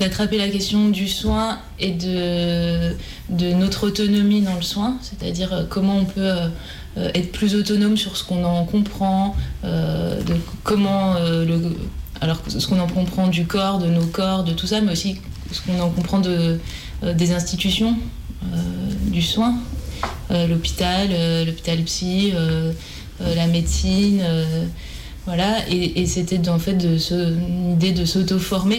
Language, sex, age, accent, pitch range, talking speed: French, female, 20-39, French, 170-195 Hz, 140 wpm